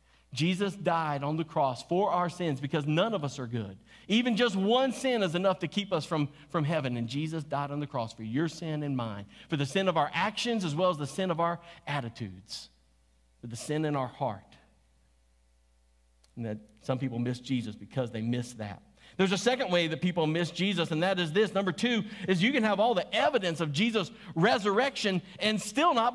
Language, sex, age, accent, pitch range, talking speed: English, male, 50-69, American, 155-225 Hz, 215 wpm